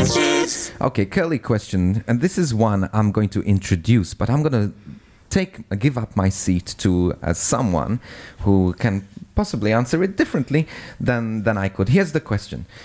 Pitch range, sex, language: 100-140 Hz, male, English